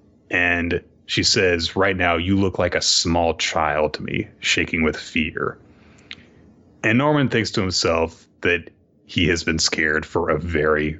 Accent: American